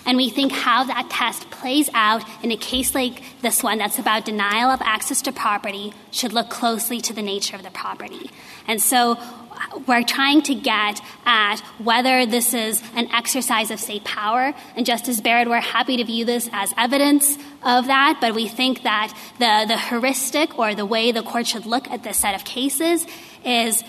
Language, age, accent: English, 20-39, American